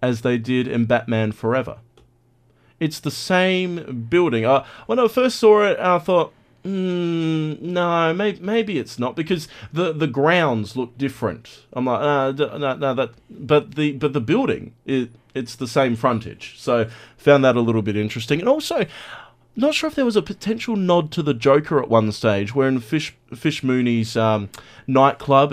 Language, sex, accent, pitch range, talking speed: English, male, Australian, 115-145 Hz, 180 wpm